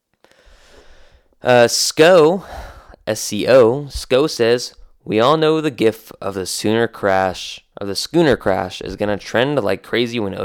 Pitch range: 95-120 Hz